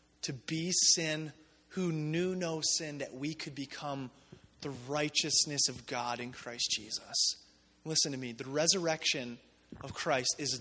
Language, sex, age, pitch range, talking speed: English, male, 30-49, 175-250 Hz, 145 wpm